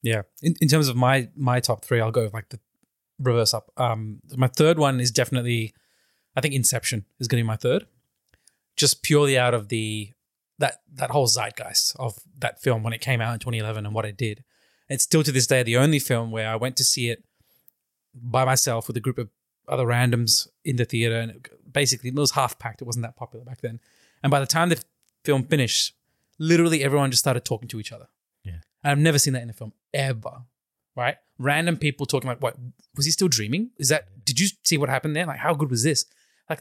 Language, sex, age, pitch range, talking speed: English, male, 20-39, 115-145 Hz, 235 wpm